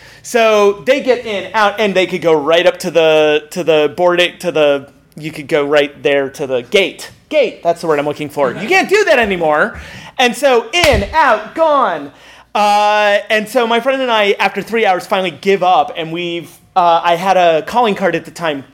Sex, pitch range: male, 170-235 Hz